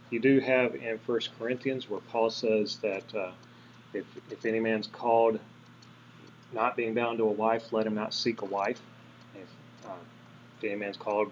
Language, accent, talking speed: English, American, 180 wpm